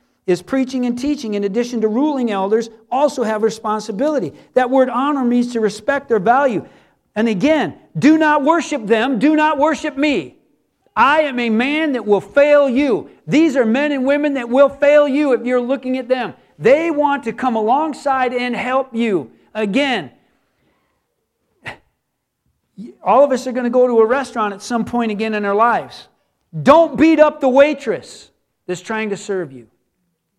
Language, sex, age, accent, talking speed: English, male, 50-69, American, 175 wpm